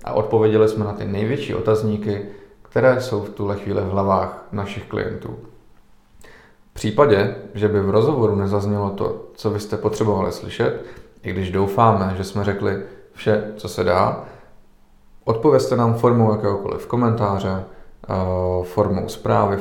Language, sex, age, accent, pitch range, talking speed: Czech, male, 40-59, native, 100-110 Hz, 140 wpm